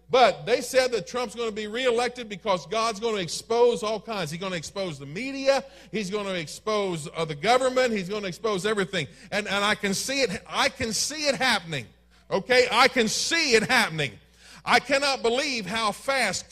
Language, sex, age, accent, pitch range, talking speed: English, male, 40-59, American, 180-245 Hz, 205 wpm